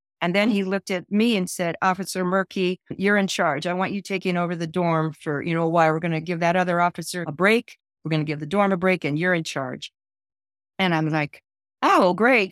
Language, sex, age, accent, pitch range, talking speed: English, female, 50-69, American, 160-190 Hz, 240 wpm